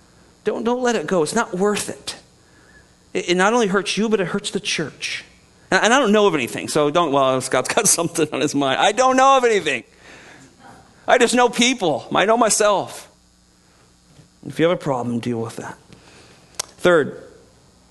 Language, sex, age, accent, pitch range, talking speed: English, male, 40-59, American, 125-185 Hz, 195 wpm